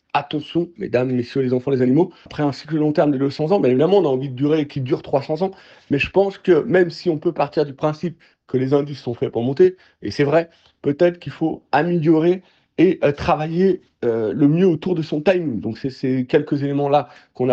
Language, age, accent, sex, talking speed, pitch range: French, 40-59, French, male, 230 wpm, 135-165 Hz